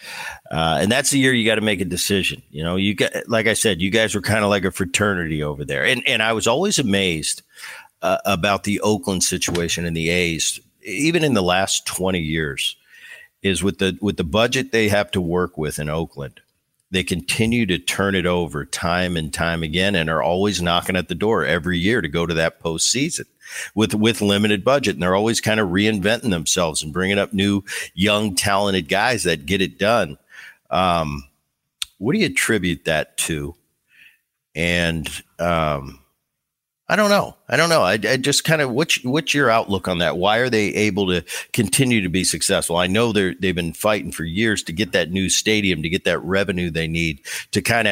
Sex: male